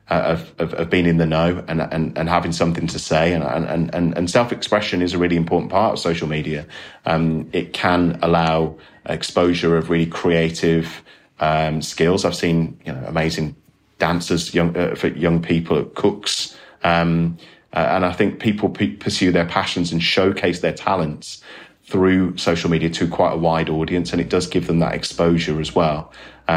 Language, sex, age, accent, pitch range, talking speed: English, male, 30-49, British, 80-90 Hz, 185 wpm